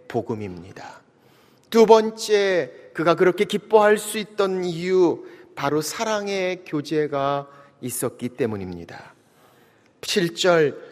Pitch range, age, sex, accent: 160-225 Hz, 30-49, male, native